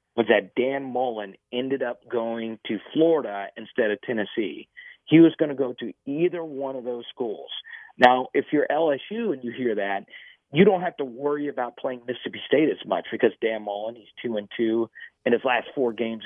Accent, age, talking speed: American, 40-59, 200 wpm